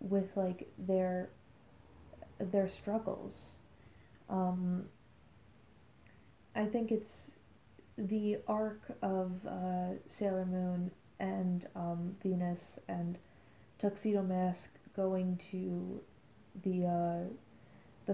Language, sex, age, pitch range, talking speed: English, female, 20-39, 180-200 Hz, 80 wpm